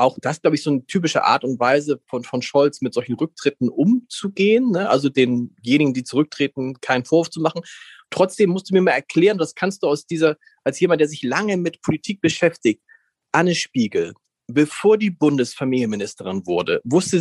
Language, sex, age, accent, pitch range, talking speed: German, male, 40-59, German, 140-195 Hz, 180 wpm